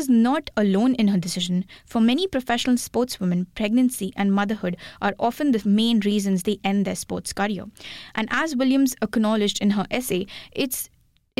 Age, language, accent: 20-39, English, Indian